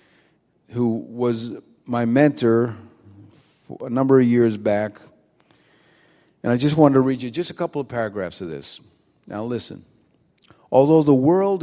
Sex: male